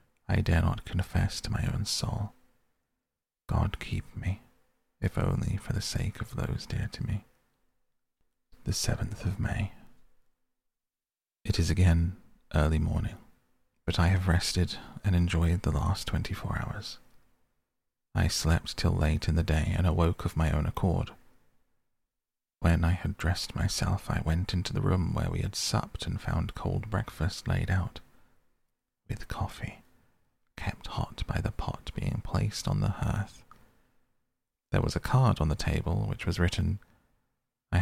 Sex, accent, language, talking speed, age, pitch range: male, British, English, 150 wpm, 30-49, 85-110 Hz